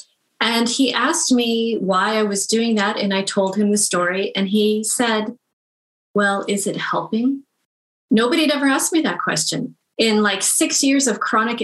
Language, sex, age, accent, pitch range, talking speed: English, female, 30-49, American, 195-240 Hz, 180 wpm